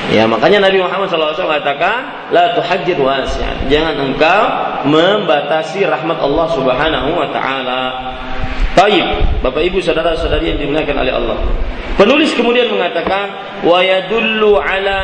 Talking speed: 125 wpm